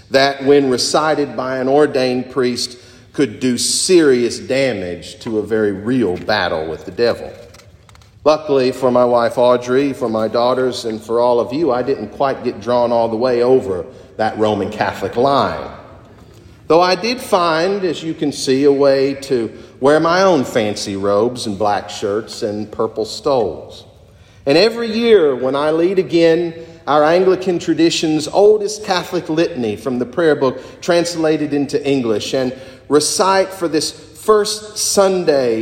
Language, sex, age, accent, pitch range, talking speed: English, male, 50-69, American, 115-165 Hz, 155 wpm